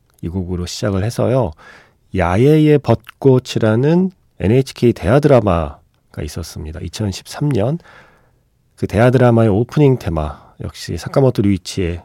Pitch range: 85-125 Hz